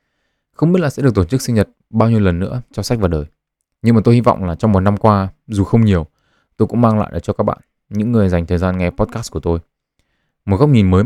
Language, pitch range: Vietnamese, 90-115 Hz